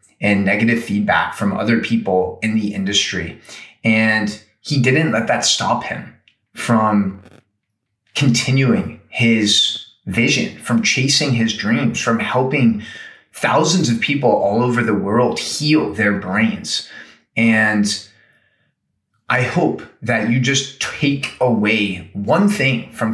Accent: American